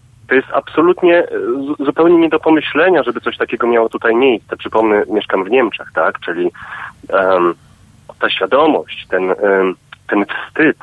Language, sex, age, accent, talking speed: Polish, male, 30-49, native, 145 wpm